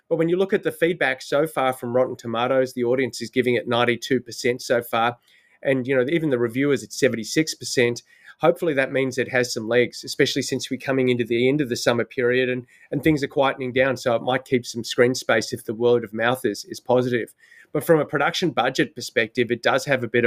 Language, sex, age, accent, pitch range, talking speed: English, male, 30-49, Australian, 120-135 Hz, 230 wpm